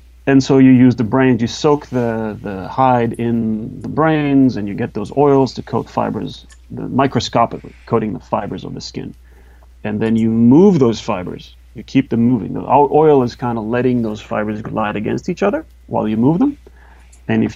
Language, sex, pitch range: English, male, 95-125 Hz